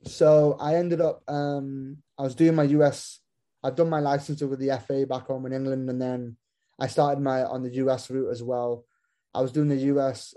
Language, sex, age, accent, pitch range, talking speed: English, male, 10-29, British, 125-140 Hz, 225 wpm